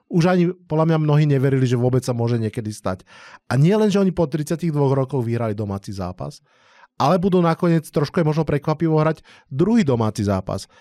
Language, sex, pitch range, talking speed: Slovak, male, 120-150 Hz, 190 wpm